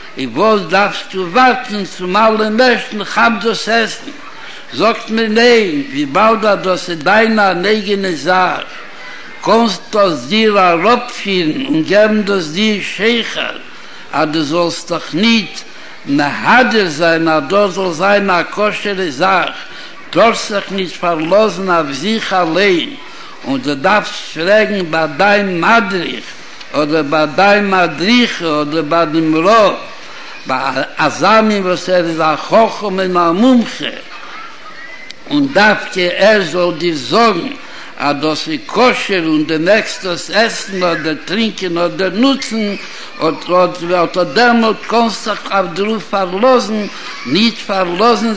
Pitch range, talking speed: 180-225 Hz, 125 wpm